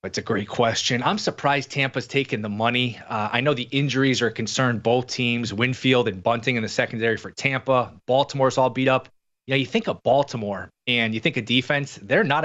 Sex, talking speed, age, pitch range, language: male, 215 wpm, 20-39, 115-145 Hz, English